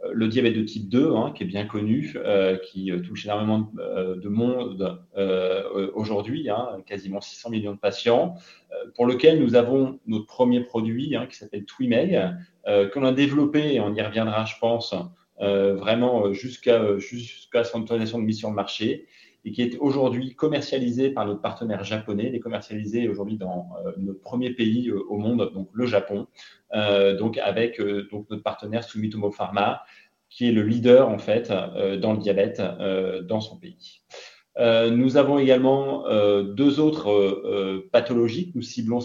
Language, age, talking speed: French, 30-49, 165 wpm